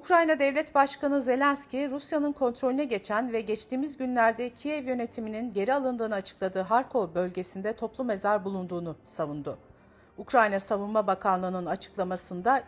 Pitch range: 190-265 Hz